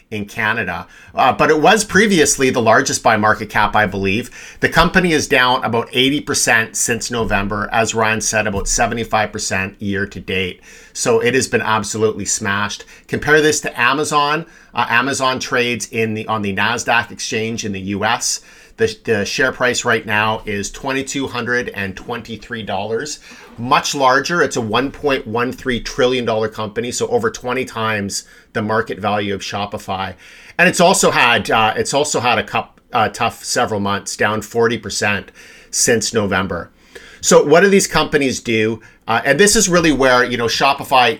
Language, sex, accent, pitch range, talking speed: English, male, American, 100-120 Hz, 170 wpm